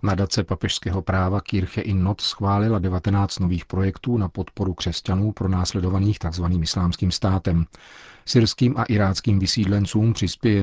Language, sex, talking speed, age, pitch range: Czech, male, 125 wpm, 40-59, 90-105 Hz